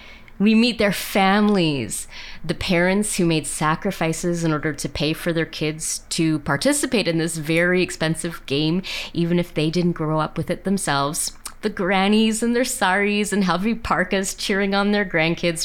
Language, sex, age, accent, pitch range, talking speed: English, female, 30-49, American, 160-210 Hz, 170 wpm